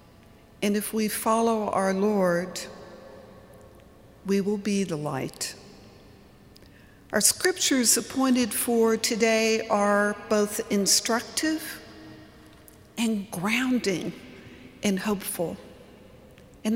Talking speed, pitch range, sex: 85 wpm, 185-235 Hz, female